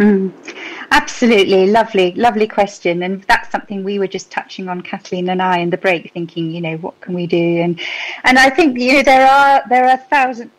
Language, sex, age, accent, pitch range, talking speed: English, female, 40-59, British, 180-230 Hz, 210 wpm